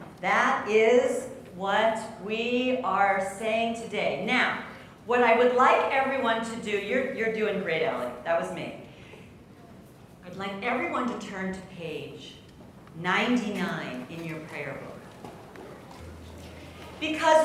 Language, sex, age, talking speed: English, female, 40-59, 125 wpm